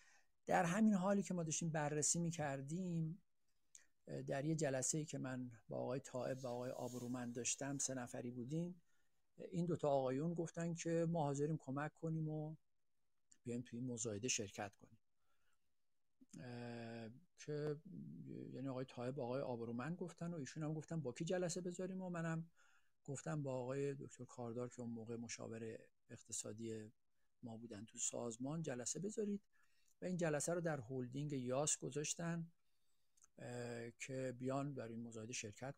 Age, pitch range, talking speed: 50-69, 120-165 Hz, 150 wpm